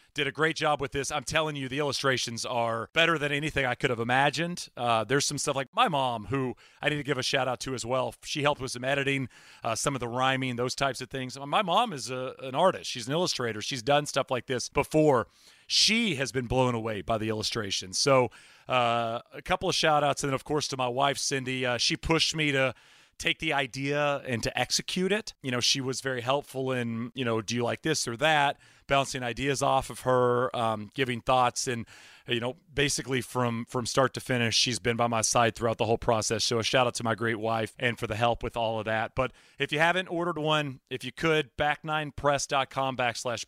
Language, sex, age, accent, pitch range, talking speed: English, male, 30-49, American, 120-140 Hz, 235 wpm